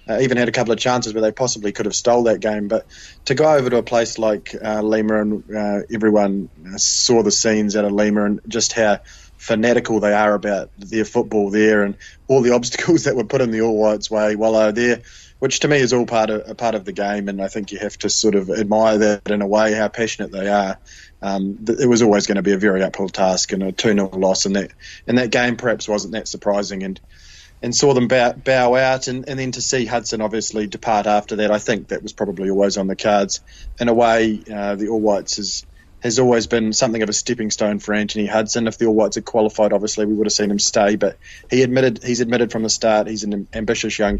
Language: English